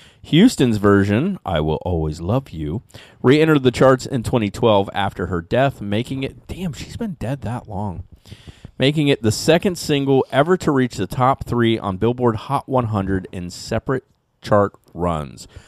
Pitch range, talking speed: 95-135 Hz, 160 wpm